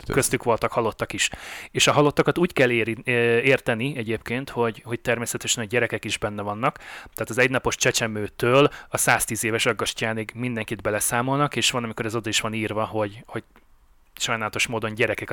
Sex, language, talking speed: male, Hungarian, 170 wpm